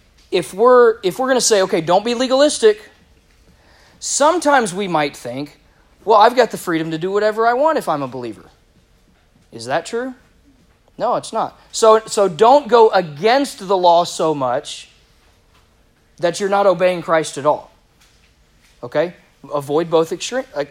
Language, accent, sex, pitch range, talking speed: English, American, male, 130-185 Hz, 160 wpm